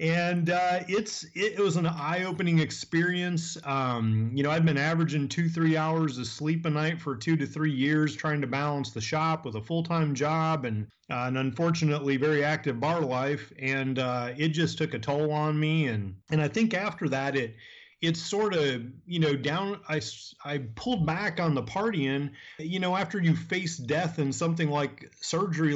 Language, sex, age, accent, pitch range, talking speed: English, male, 30-49, American, 135-160 Hz, 195 wpm